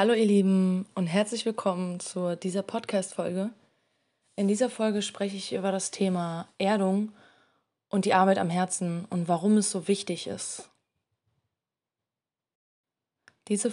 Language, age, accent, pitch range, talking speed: German, 20-39, German, 180-205 Hz, 130 wpm